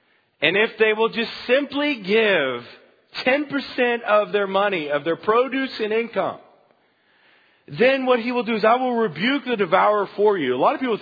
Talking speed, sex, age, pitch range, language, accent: 180 wpm, male, 40-59, 120-185 Hz, English, American